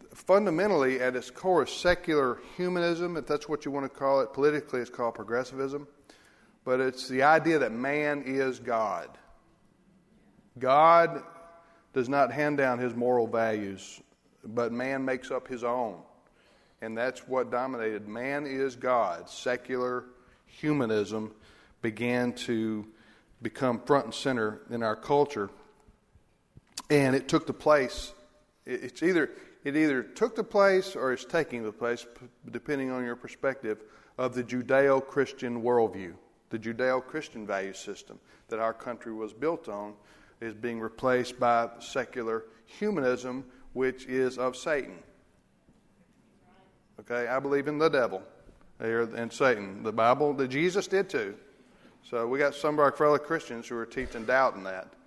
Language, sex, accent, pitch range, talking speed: English, male, American, 115-145 Hz, 145 wpm